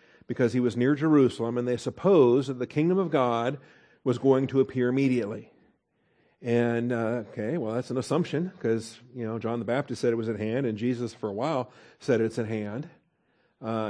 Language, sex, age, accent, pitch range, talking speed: English, male, 50-69, American, 115-145 Hz, 200 wpm